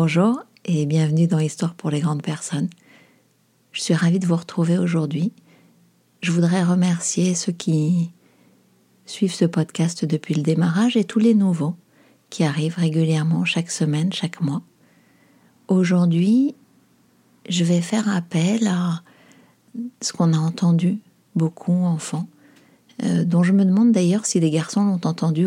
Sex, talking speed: female, 140 wpm